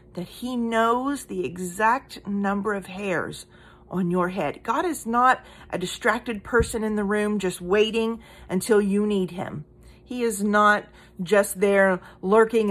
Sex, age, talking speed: female, 40-59, 150 wpm